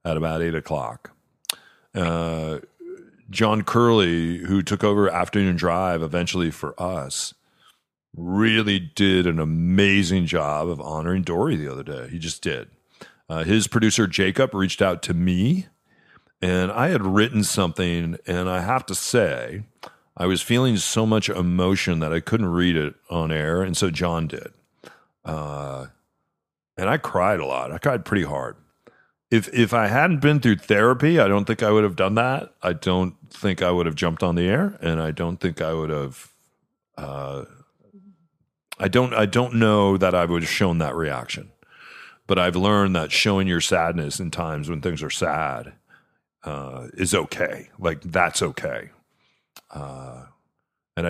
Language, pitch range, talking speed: English, 80-105 Hz, 165 wpm